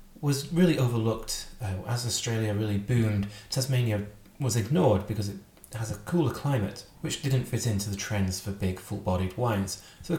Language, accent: English, British